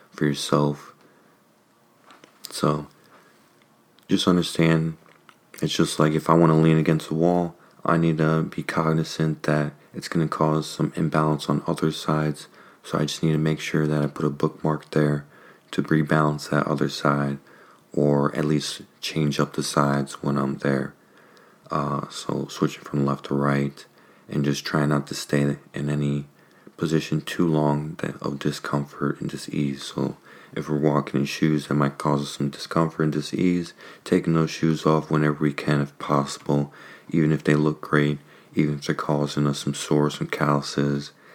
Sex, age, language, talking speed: male, 30-49, English, 170 wpm